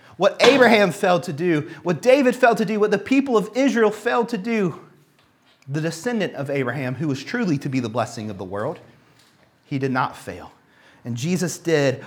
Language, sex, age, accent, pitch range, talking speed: English, male, 30-49, American, 130-205 Hz, 195 wpm